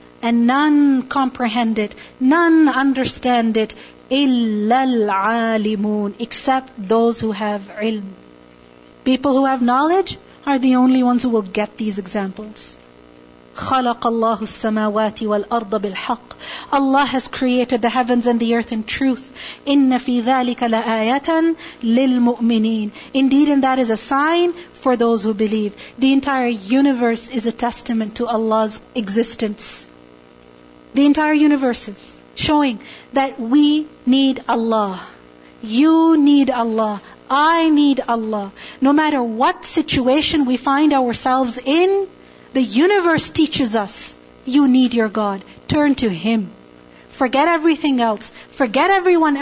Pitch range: 220-280 Hz